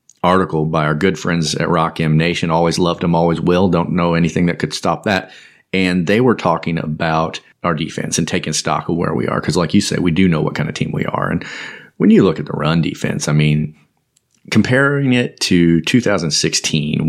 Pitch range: 80-100 Hz